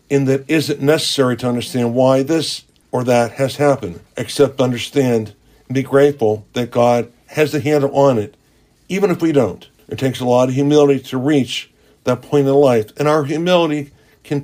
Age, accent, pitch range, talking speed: 60-79, American, 115-145 Hz, 185 wpm